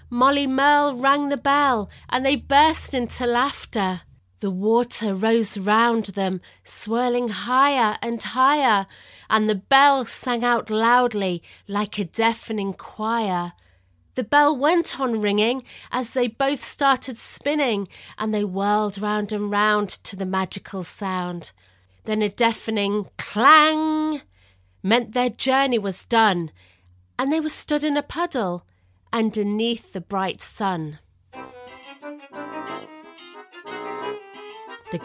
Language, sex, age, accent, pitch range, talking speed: English, female, 30-49, British, 175-245 Hz, 120 wpm